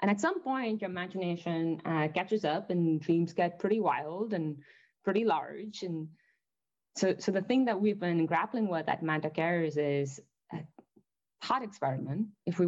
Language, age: English, 20-39